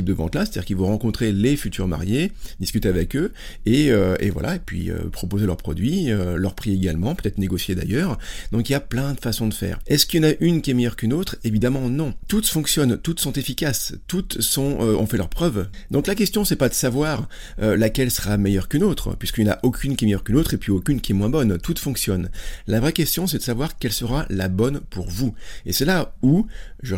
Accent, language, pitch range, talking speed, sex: French, French, 100-135 Hz, 250 wpm, male